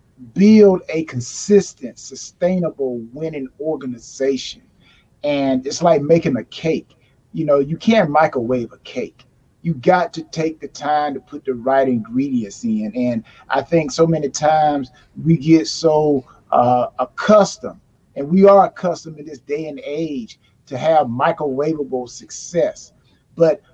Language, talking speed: English, 140 wpm